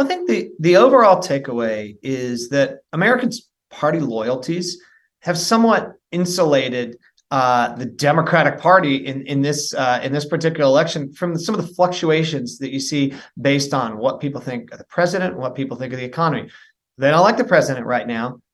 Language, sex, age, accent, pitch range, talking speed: English, male, 30-49, American, 125-160 Hz, 180 wpm